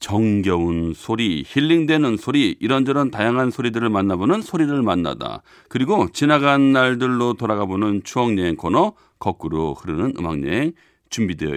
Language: Korean